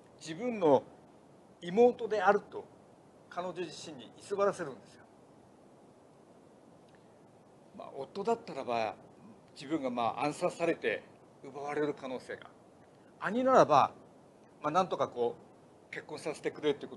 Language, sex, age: Japanese, male, 50-69